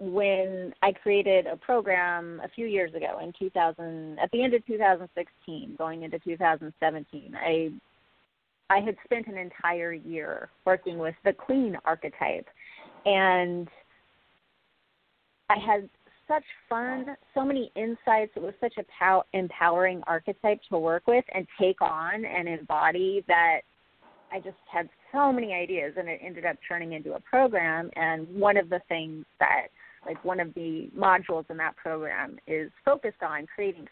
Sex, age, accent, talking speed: female, 30-49, American, 165 wpm